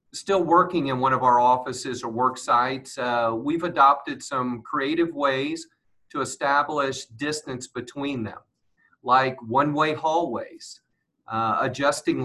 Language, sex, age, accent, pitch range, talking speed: English, male, 40-59, American, 120-145 Hz, 125 wpm